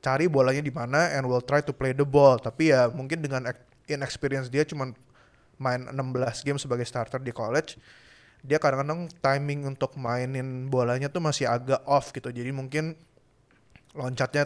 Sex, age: male, 20-39